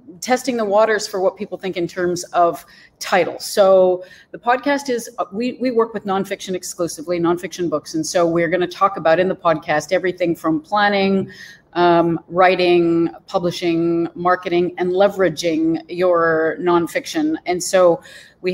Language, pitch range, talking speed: English, 170-210 Hz, 150 wpm